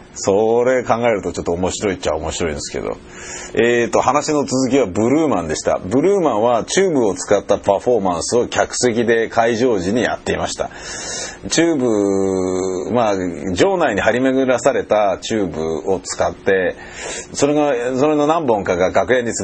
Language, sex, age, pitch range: Japanese, male, 30-49, 80-130 Hz